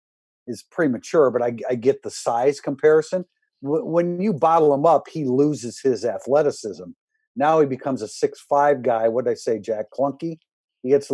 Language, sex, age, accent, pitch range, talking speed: English, male, 50-69, American, 125-160 Hz, 185 wpm